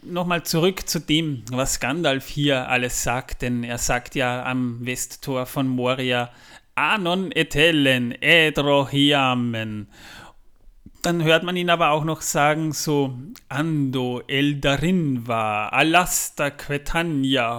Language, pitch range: German, 130-160 Hz